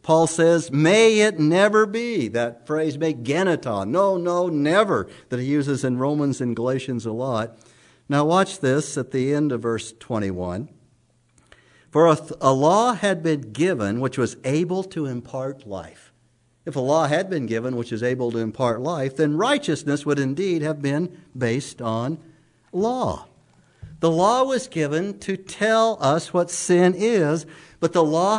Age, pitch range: 60-79, 140-185 Hz